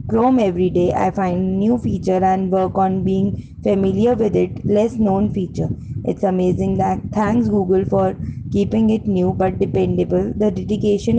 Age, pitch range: 20-39, 180-205 Hz